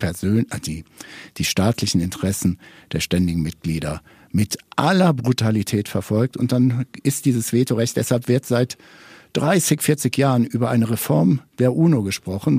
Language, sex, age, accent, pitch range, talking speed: German, male, 60-79, German, 100-135 Hz, 140 wpm